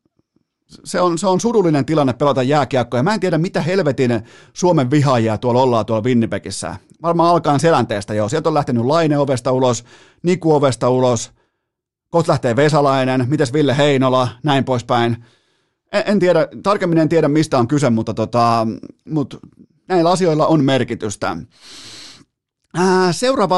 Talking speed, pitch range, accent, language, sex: 145 wpm, 120-160 Hz, native, Finnish, male